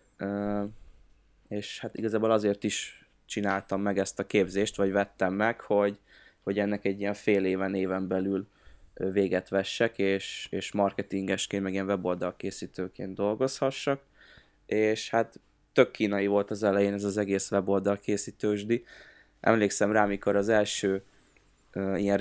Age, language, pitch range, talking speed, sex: 20-39, Hungarian, 95-110 Hz, 130 wpm, male